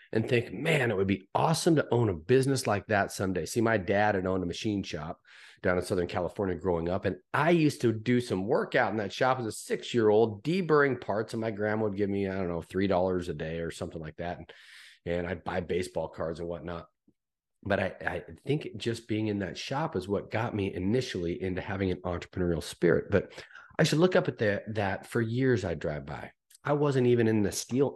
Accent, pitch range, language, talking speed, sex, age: American, 90-115 Hz, English, 225 wpm, male, 30-49